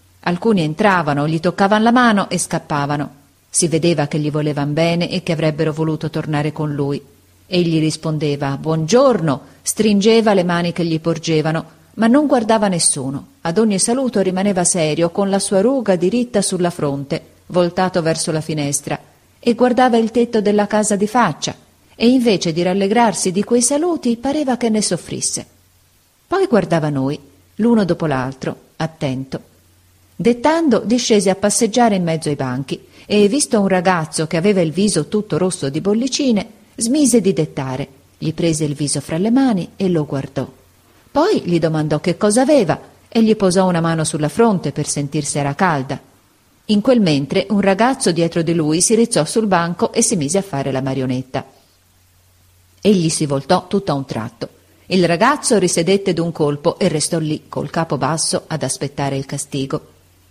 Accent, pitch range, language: native, 150-210 Hz, Italian